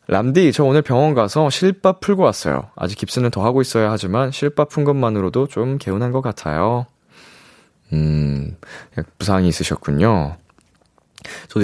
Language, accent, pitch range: Korean, native, 90-145 Hz